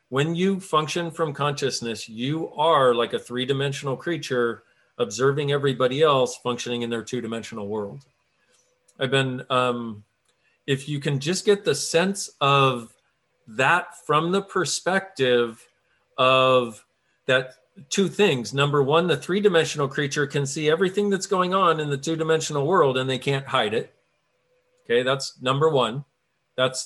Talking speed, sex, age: 140 wpm, male, 40-59